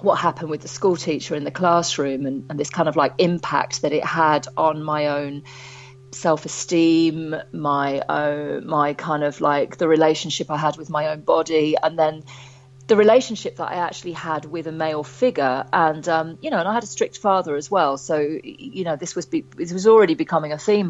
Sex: female